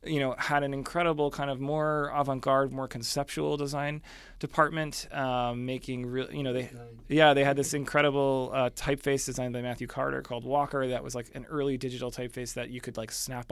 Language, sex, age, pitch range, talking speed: English, male, 20-39, 125-145 Hz, 195 wpm